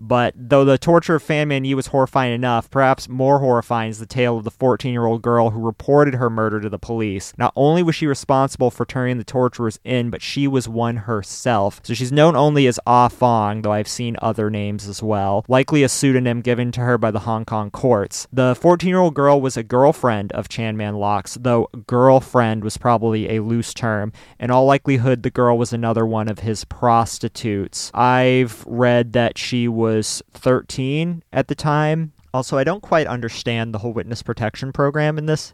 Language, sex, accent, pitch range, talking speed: English, male, American, 110-130 Hz, 200 wpm